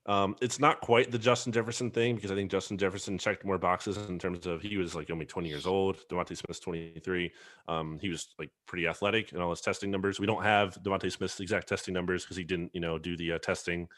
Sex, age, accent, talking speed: male, 20-39, American, 245 wpm